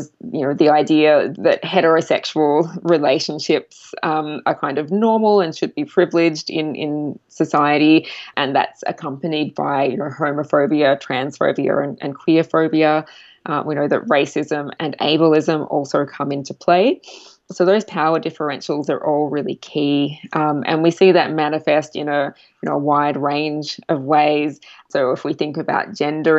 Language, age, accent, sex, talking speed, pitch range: English, 20-39, Australian, female, 155 wpm, 145-160 Hz